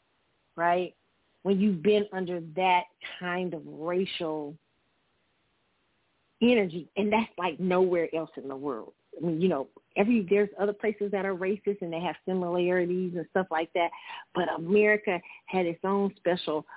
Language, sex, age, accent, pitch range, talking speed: English, female, 40-59, American, 165-200 Hz, 155 wpm